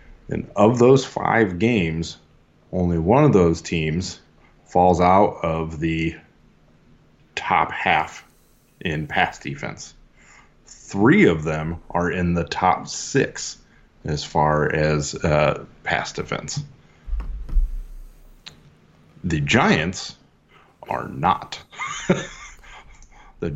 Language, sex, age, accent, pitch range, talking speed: English, male, 30-49, American, 80-95 Hz, 95 wpm